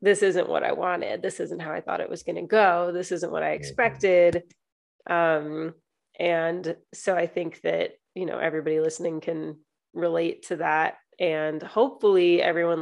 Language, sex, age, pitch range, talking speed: English, female, 30-49, 170-215 Hz, 175 wpm